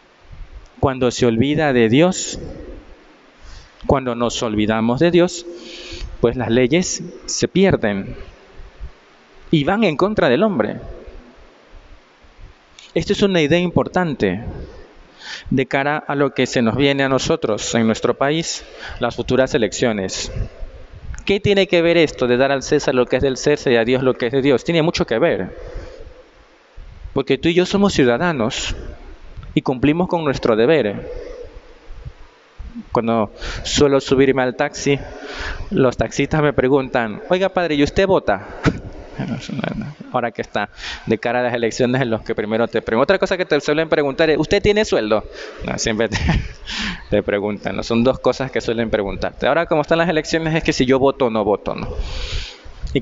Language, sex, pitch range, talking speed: Spanish, male, 120-170 Hz, 165 wpm